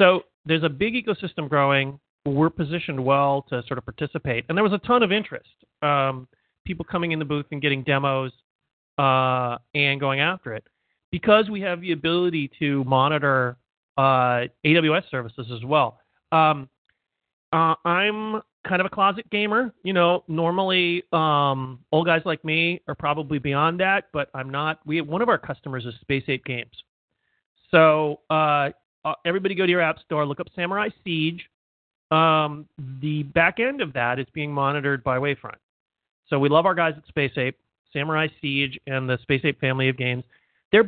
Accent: American